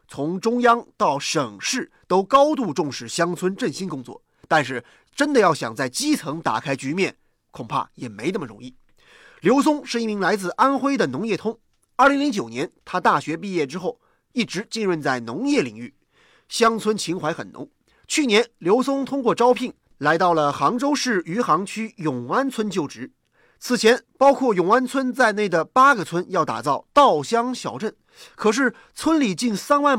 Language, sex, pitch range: Chinese, male, 180-260 Hz